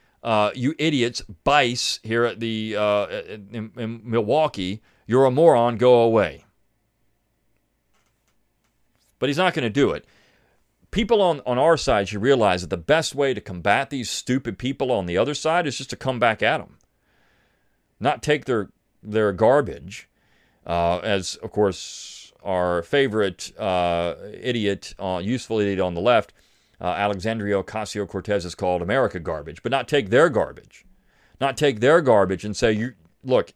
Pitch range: 100-130 Hz